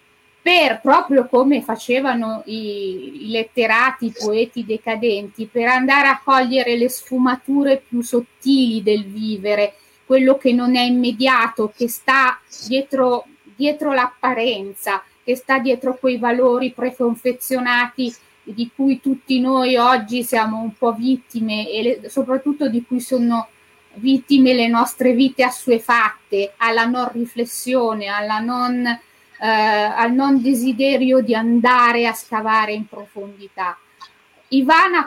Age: 20-39